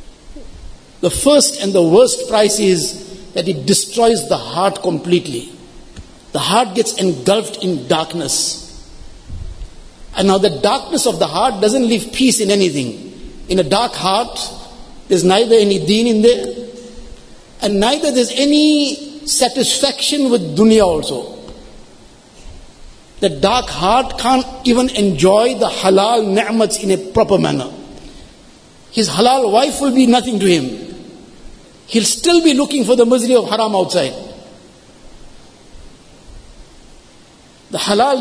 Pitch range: 190-240 Hz